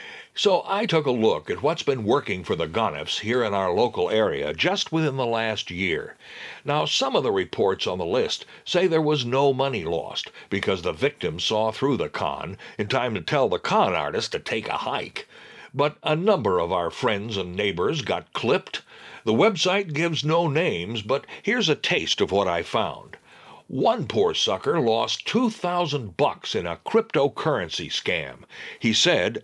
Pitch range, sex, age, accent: 115-180 Hz, male, 60-79, American